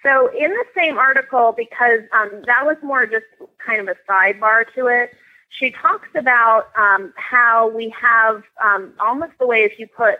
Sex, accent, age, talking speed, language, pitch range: female, American, 30-49, 180 wpm, English, 190-245 Hz